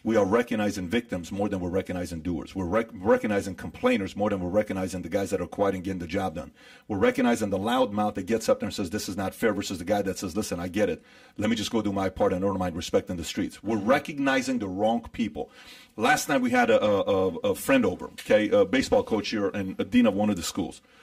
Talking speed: 250 wpm